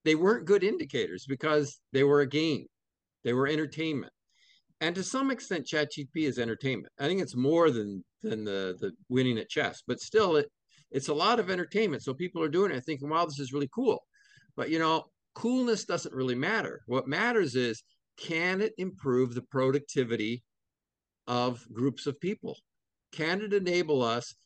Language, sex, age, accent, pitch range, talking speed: English, male, 50-69, American, 125-175 Hz, 180 wpm